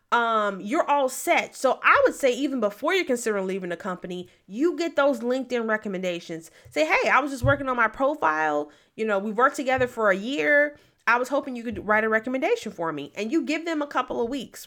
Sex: female